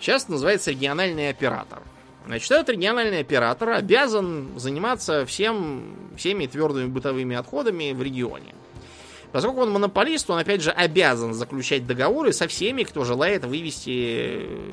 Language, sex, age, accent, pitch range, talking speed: Russian, male, 20-39, native, 120-165 Hz, 125 wpm